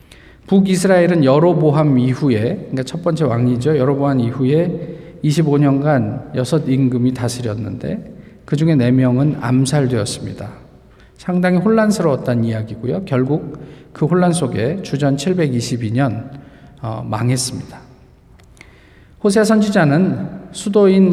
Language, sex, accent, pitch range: Korean, male, native, 130-180 Hz